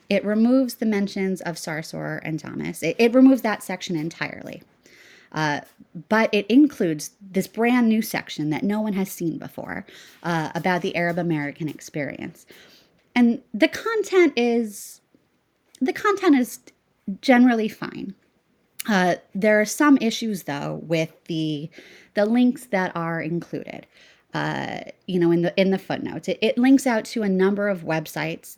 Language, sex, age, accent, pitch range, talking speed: English, female, 20-39, American, 160-220 Hz, 155 wpm